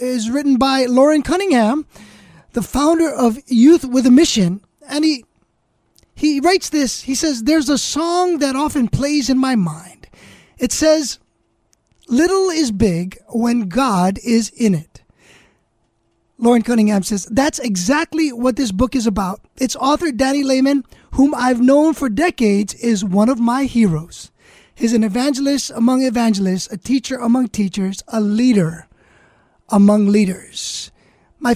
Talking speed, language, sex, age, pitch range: 145 wpm, English, male, 20-39, 225-290 Hz